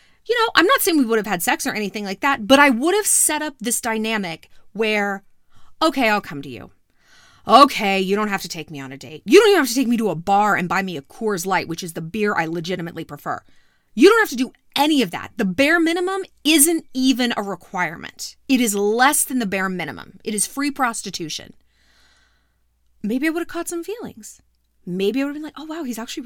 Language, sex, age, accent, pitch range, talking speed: English, female, 30-49, American, 200-305 Hz, 240 wpm